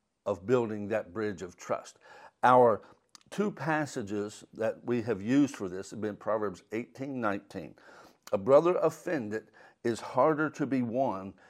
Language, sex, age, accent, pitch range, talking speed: English, male, 60-79, American, 110-135 Hz, 145 wpm